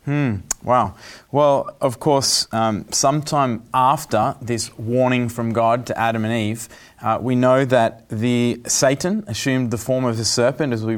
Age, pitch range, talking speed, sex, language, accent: 20-39, 115-145 Hz, 165 wpm, male, English, Australian